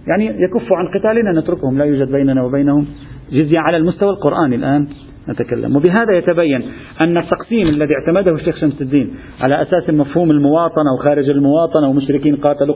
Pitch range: 130-165 Hz